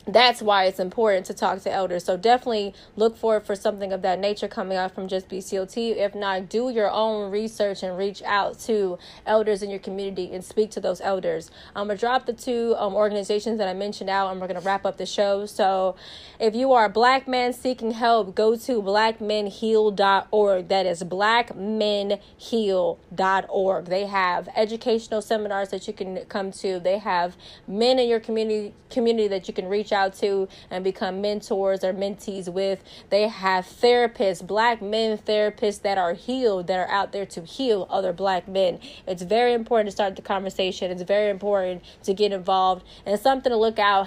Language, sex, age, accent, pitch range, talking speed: English, female, 20-39, American, 190-220 Hz, 190 wpm